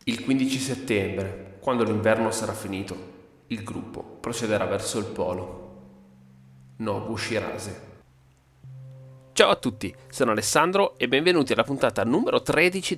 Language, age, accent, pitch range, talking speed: Italian, 30-49, native, 100-140 Hz, 115 wpm